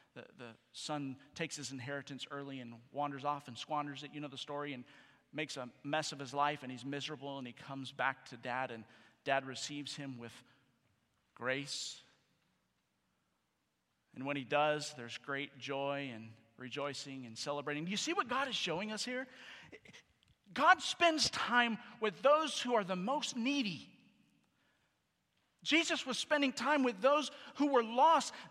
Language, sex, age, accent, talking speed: English, male, 40-59, American, 165 wpm